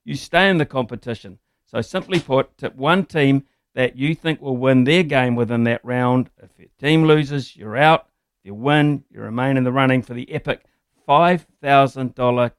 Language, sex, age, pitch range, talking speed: English, male, 60-79, 120-140 Hz, 185 wpm